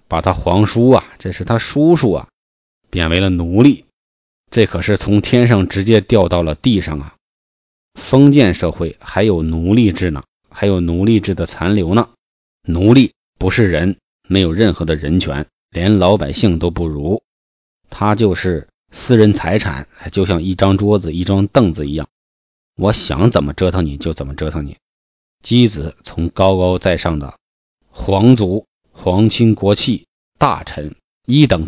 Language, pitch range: Chinese, 85-110 Hz